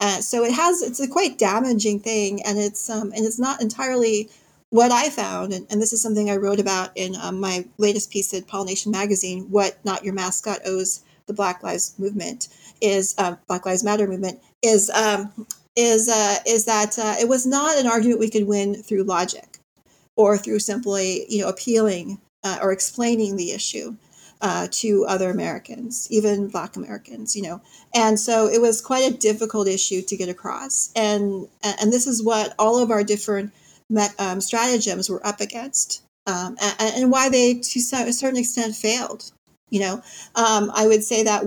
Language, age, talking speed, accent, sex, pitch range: English, 40-59, 190 wpm, American, female, 195-230 Hz